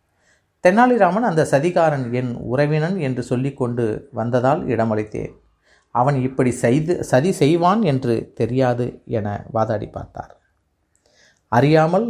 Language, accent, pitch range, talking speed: Tamil, native, 115-150 Hz, 105 wpm